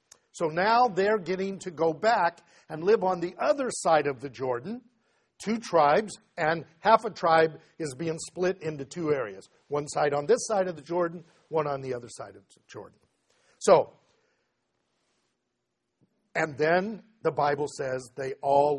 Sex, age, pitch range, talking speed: male, 60-79, 145-195 Hz, 165 wpm